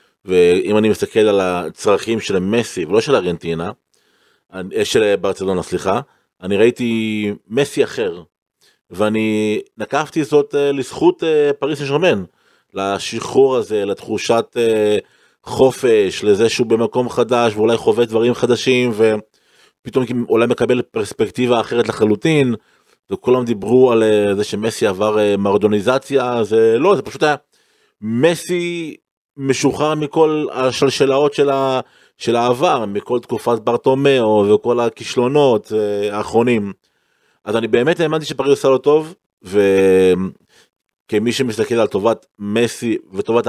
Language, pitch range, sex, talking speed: Hebrew, 105-145 Hz, male, 110 wpm